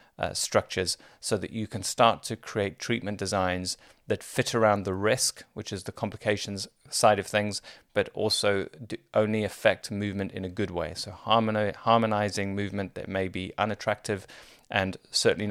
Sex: male